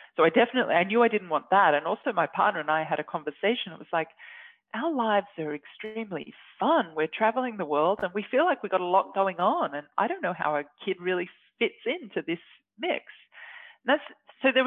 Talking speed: 230 wpm